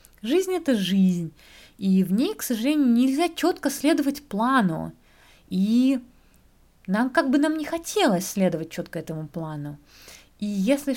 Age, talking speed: 20-39, 135 wpm